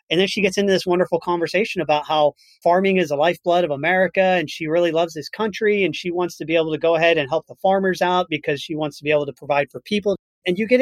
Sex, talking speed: male, 270 wpm